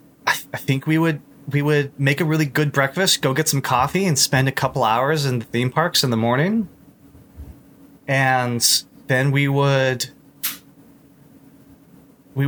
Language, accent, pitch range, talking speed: English, American, 115-150 Hz, 155 wpm